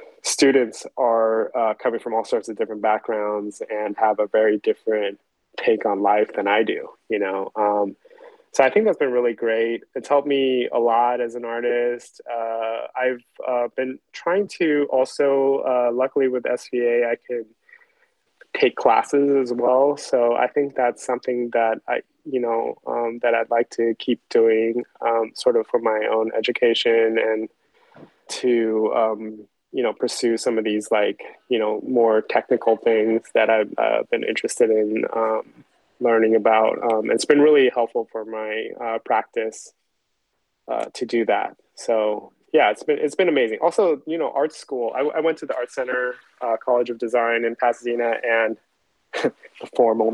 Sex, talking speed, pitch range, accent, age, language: male, 170 wpm, 115-140 Hz, American, 20-39, English